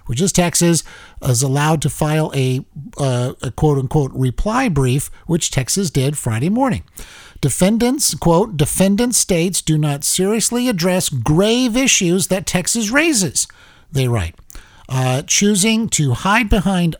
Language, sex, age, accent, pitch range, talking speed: English, male, 50-69, American, 140-200 Hz, 135 wpm